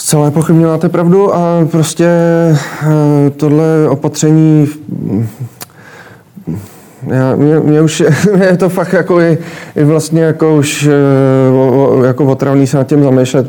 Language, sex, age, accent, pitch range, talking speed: Czech, male, 20-39, native, 130-145 Hz, 115 wpm